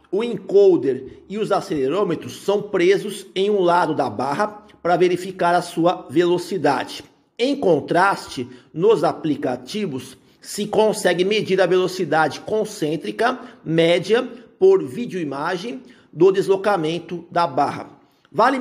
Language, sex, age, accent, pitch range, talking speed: Portuguese, male, 50-69, Brazilian, 175-215 Hz, 115 wpm